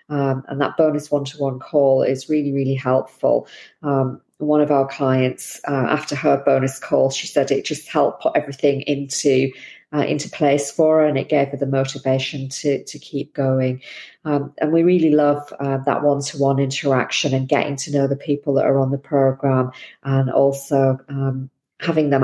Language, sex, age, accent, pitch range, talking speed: English, female, 40-59, British, 135-145 Hz, 185 wpm